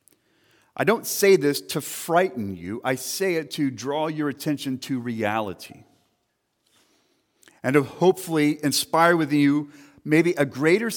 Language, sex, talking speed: English, male, 135 wpm